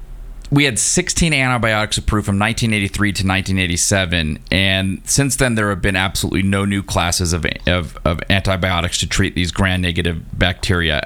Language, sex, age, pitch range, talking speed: English, male, 30-49, 90-110 Hz, 150 wpm